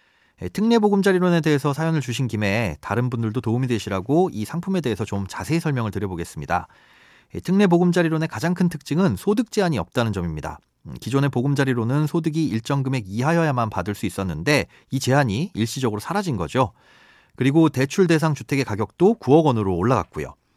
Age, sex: 30-49, male